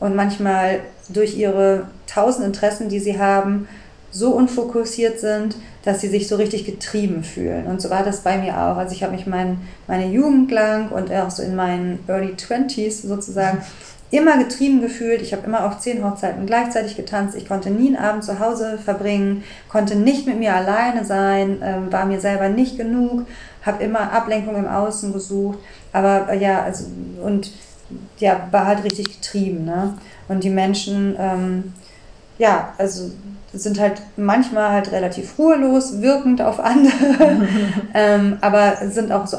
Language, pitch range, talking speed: German, 195-220 Hz, 165 wpm